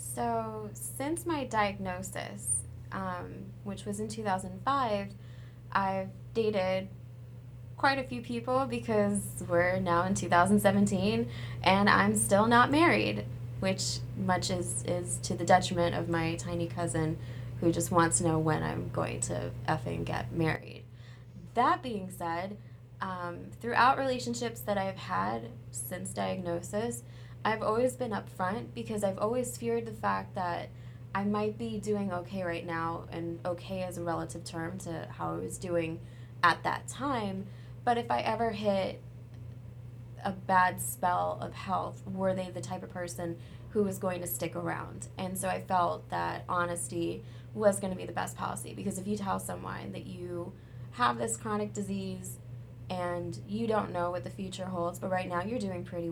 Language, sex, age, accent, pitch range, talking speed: English, female, 20-39, American, 120-185 Hz, 160 wpm